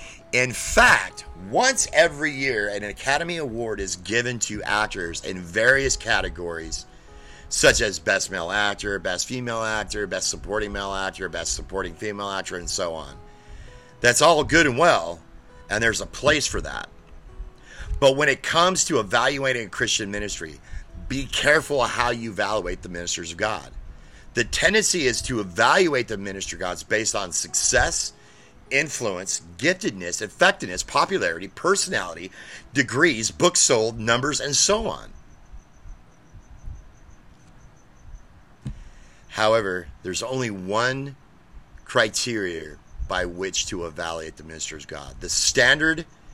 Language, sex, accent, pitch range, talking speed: English, male, American, 90-125 Hz, 130 wpm